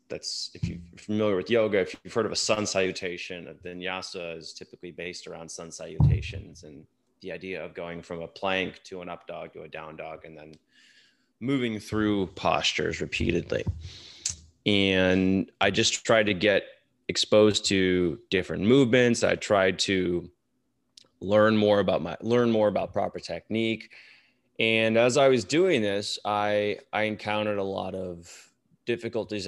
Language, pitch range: English, 90-110 Hz